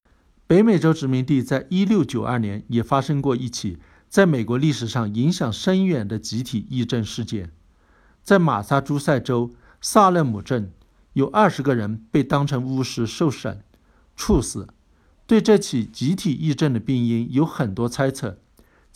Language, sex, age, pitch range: Chinese, male, 60-79, 110-155 Hz